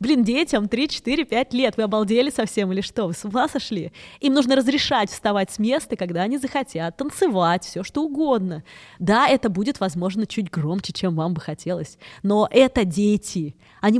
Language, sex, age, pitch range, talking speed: Russian, female, 20-39, 180-230 Hz, 170 wpm